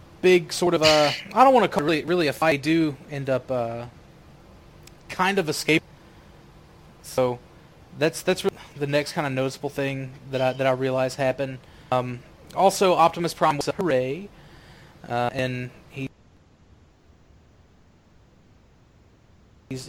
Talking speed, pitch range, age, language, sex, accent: 140 wpm, 125-160 Hz, 20-39, English, male, American